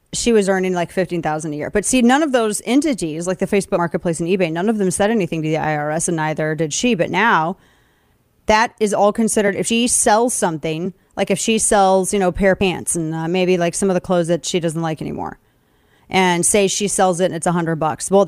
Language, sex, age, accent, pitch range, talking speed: English, female, 30-49, American, 175-215 Hz, 245 wpm